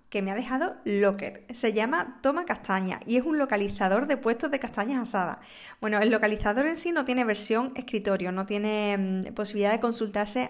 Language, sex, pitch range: Spanish, female, 195-245 Hz